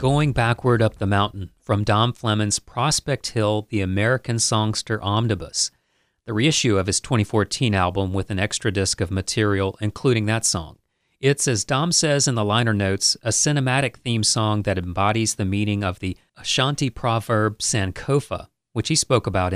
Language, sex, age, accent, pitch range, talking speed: English, male, 40-59, American, 105-125 Hz, 165 wpm